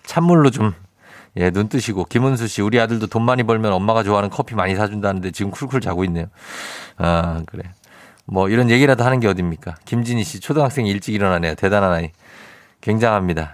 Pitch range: 95-130 Hz